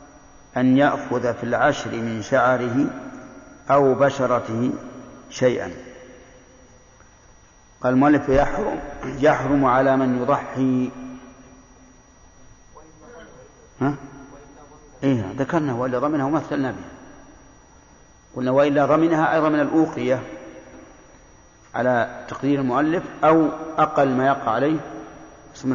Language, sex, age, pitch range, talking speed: Arabic, male, 50-69, 125-145 Hz, 90 wpm